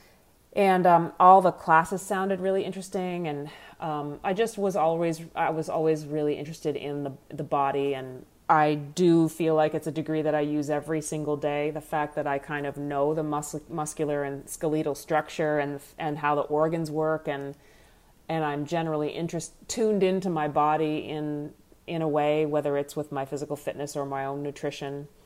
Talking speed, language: 190 wpm, English